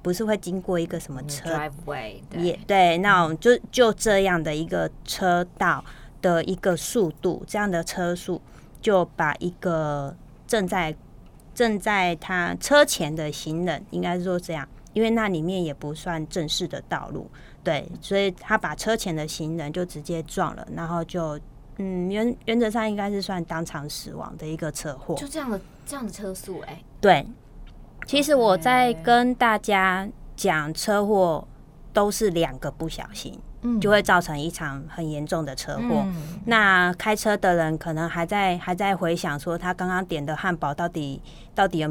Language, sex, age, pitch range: Chinese, female, 20-39, 160-195 Hz